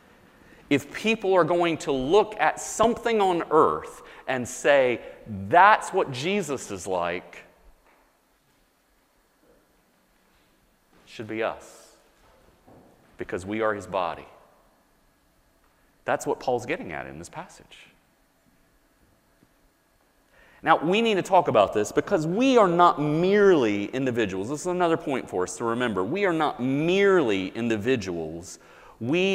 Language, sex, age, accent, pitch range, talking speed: English, male, 40-59, American, 120-185 Hz, 125 wpm